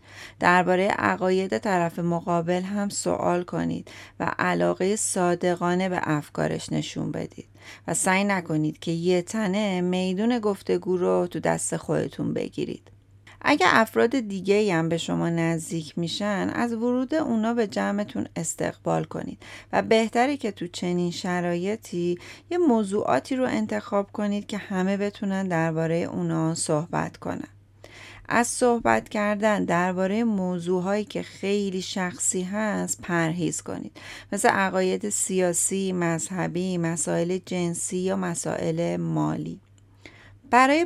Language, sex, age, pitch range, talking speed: Persian, female, 30-49, 160-205 Hz, 120 wpm